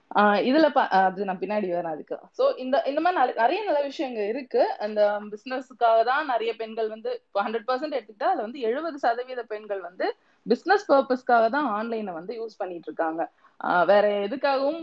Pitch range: 205-275 Hz